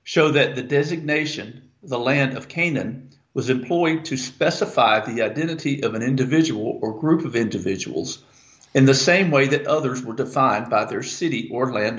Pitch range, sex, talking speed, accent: 125-150 Hz, male, 170 wpm, American